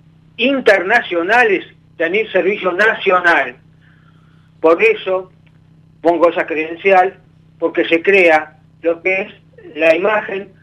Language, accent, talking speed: Italian, Argentinian, 95 wpm